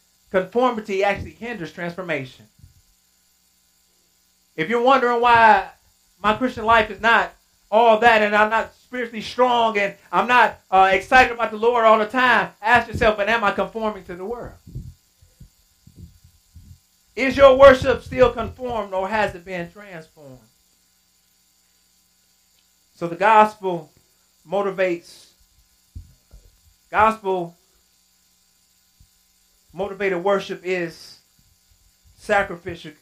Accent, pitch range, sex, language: American, 130-200 Hz, male, English